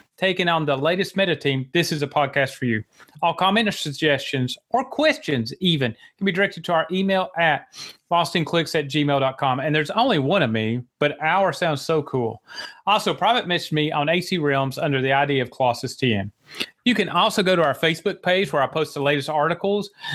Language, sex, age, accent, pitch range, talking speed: English, male, 30-49, American, 140-190 Hz, 200 wpm